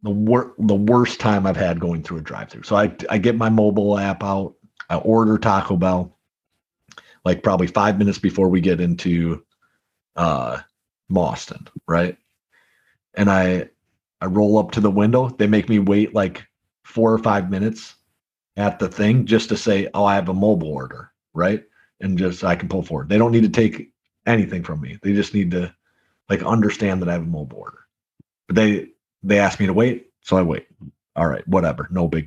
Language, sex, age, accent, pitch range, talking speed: English, male, 40-59, American, 90-110 Hz, 195 wpm